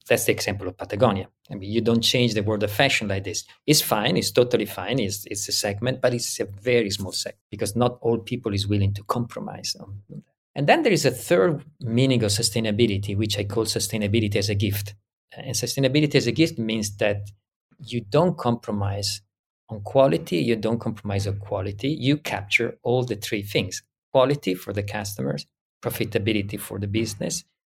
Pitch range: 100-120 Hz